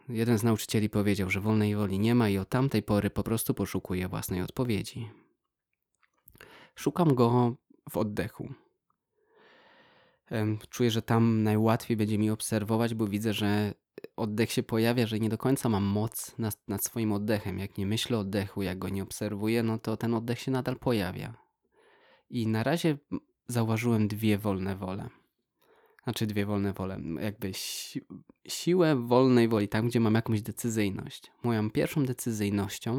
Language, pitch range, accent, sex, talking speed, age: Polish, 105-125 Hz, native, male, 155 wpm, 20-39